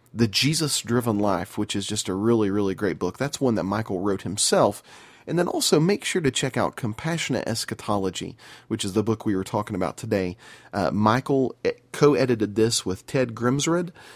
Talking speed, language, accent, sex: 185 wpm, English, American, male